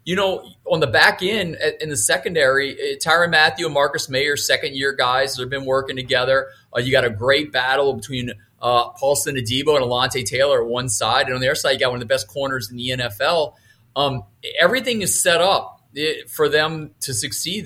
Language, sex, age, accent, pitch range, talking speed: English, male, 30-49, American, 120-145 Hz, 205 wpm